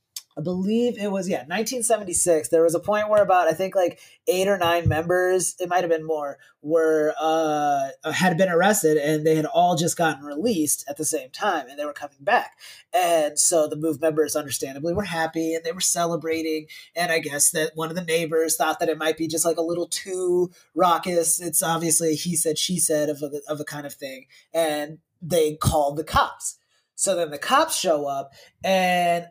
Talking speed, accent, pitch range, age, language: 205 wpm, American, 155-180 Hz, 30-49, English